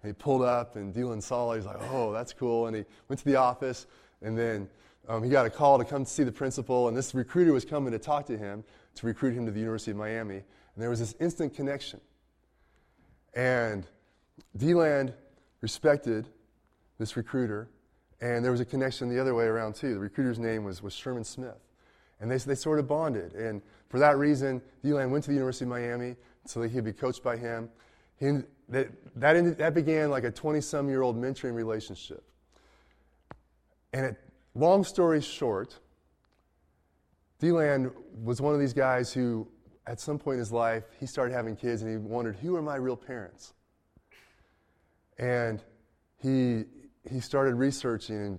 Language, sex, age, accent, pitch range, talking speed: English, male, 20-39, American, 110-135 Hz, 180 wpm